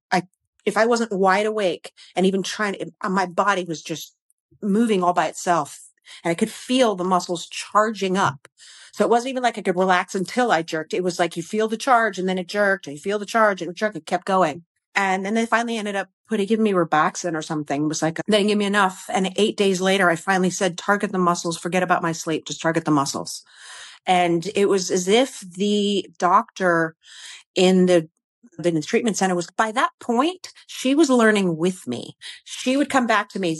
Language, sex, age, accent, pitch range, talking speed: English, female, 40-59, American, 180-225 Hz, 225 wpm